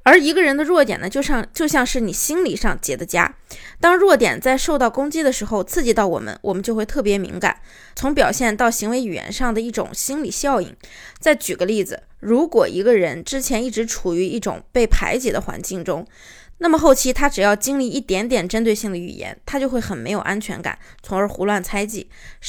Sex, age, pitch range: female, 20-39, 210-270 Hz